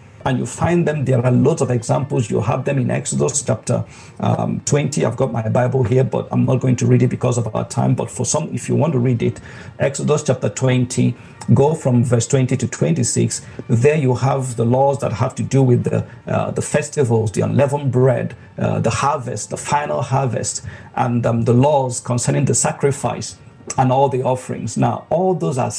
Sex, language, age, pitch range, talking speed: male, English, 50-69, 120-150 Hz, 205 wpm